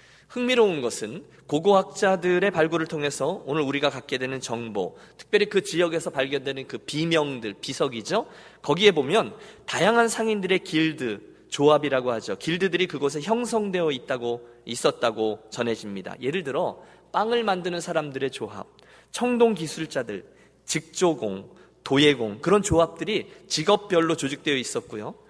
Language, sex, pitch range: Korean, male, 135-210 Hz